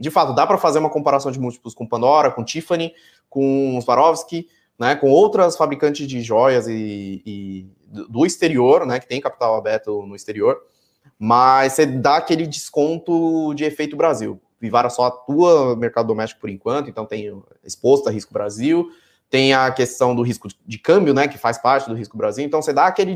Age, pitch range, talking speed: 20-39, 120-155 Hz, 185 wpm